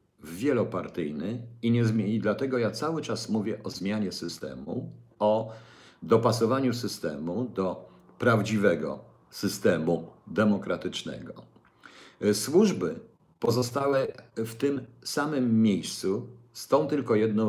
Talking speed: 105 wpm